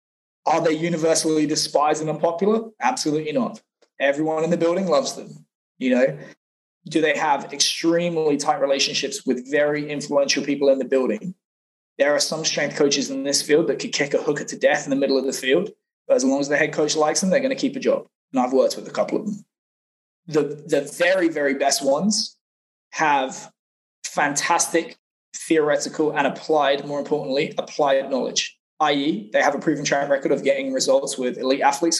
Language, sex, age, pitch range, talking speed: English, male, 20-39, 140-200 Hz, 190 wpm